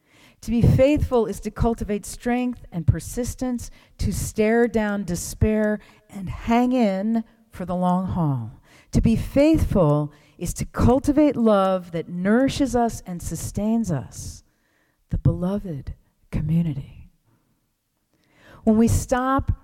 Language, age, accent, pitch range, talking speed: English, 40-59, American, 145-235 Hz, 120 wpm